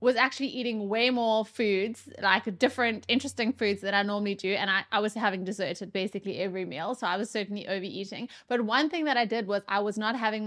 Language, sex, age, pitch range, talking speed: English, female, 20-39, 210-265 Hz, 230 wpm